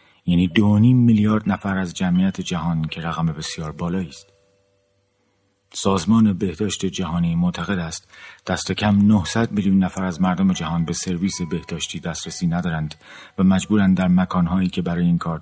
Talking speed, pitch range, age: 150 wpm, 85-105 Hz, 40-59